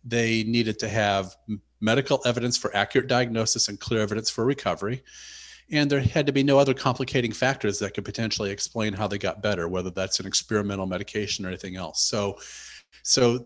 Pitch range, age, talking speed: 105-140 Hz, 40-59, 185 wpm